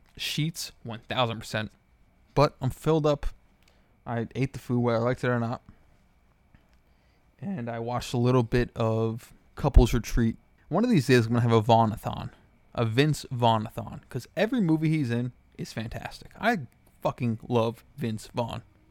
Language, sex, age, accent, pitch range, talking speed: English, male, 20-39, American, 110-125 Hz, 160 wpm